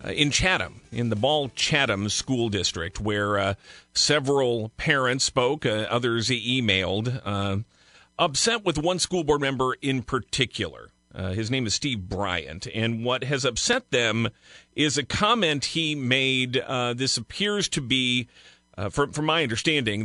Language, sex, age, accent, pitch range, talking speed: English, male, 40-59, American, 100-140 Hz, 155 wpm